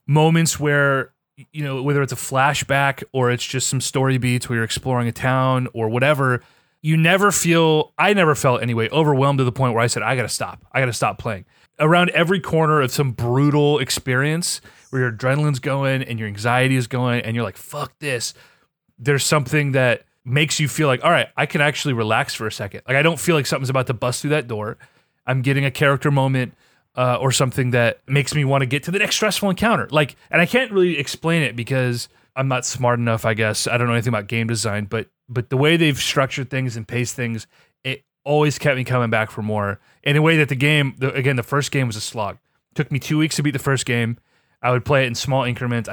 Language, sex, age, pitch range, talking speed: English, male, 30-49, 120-150 Hz, 235 wpm